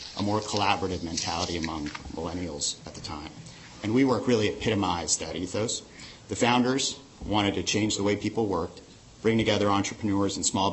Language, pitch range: English, 90-115 Hz